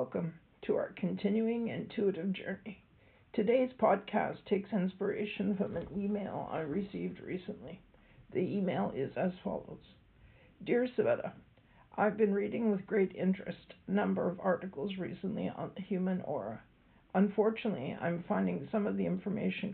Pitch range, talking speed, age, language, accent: 185-210 Hz, 135 wpm, 50-69, English, American